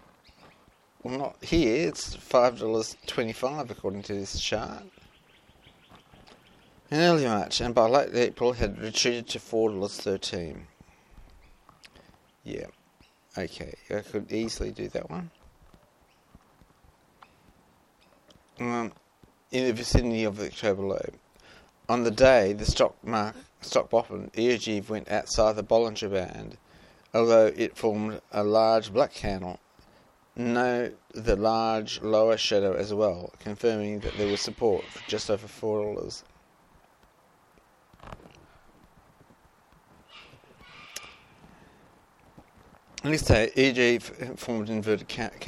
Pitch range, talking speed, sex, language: 105-120 Hz, 105 wpm, male, English